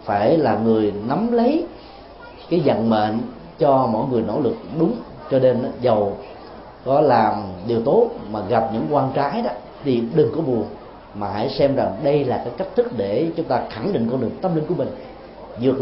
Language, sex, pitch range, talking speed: Vietnamese, male, 115-180 Hz, 200 wpm